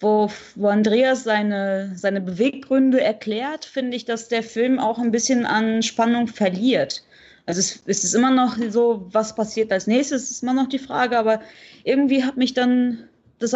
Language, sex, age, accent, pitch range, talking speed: German, female, 20-39, German, 205-245 Hz, 170 wpm